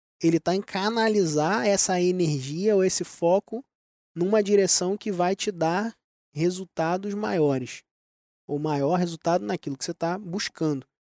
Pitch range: 160-215 Hz